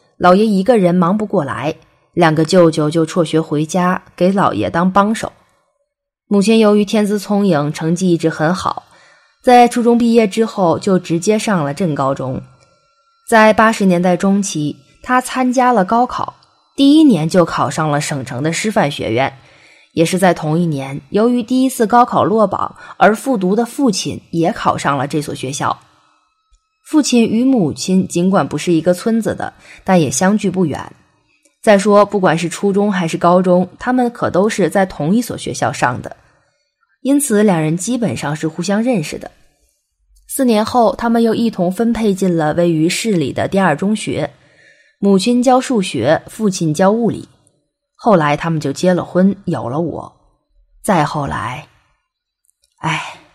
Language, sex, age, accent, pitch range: Chinese, female, 20-39, native, 165-230 Hz